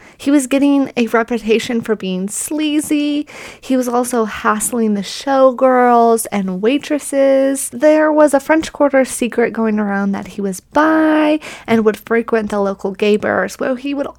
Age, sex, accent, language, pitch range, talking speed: 20-39, female, American, English, 220-280 Hz, 160 wpm